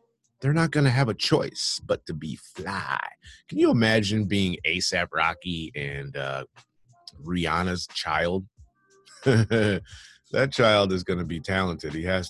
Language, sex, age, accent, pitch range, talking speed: English, male, 30-49, American, 80-125 Hz, 145 wpm